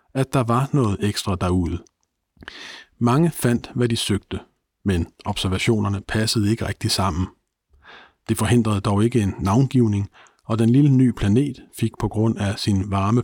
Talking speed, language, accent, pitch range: 155 wpm, Danish, native, 100-130 Hz